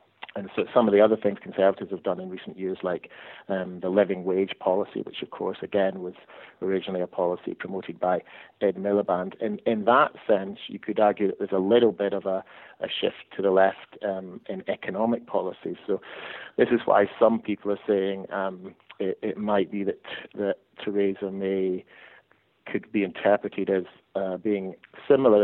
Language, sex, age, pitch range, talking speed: English, male, 30-49, 95-100 Hz, 185 wpm